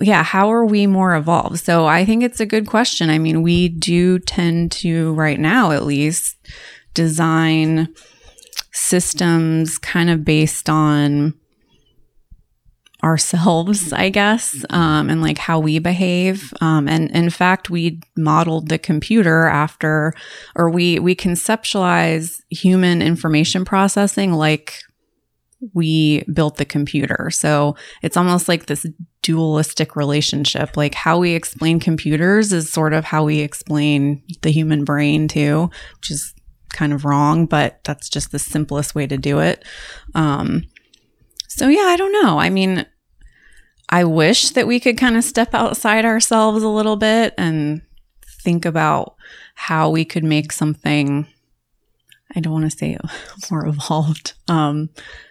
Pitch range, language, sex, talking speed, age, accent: 155-185 Hz, English, female, 140 wpm, 20-39, American